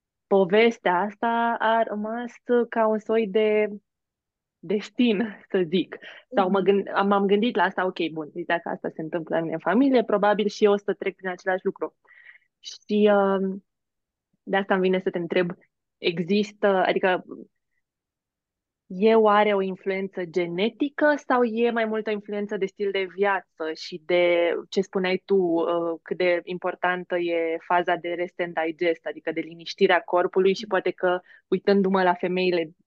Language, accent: Romanian, native